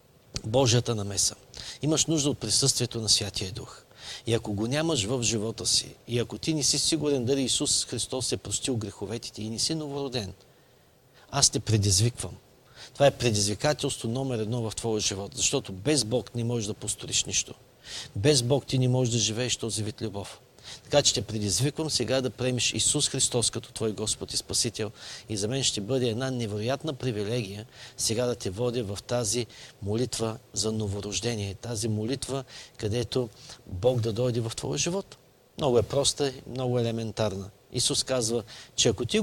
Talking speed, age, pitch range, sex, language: 175 wpm, 50-69, 110-135 Hz, male, Bulgarian